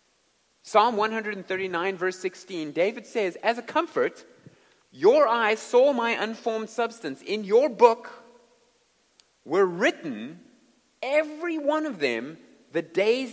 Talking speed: 115 wpm